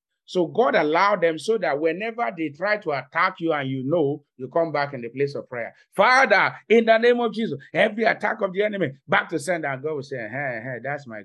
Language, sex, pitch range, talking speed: English, male, 130-170 Hz, 240 wpm